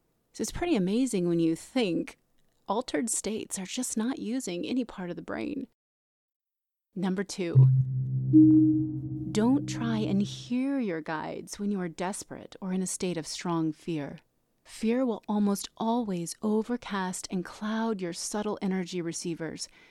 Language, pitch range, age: English, 175-225 Hz, 30-49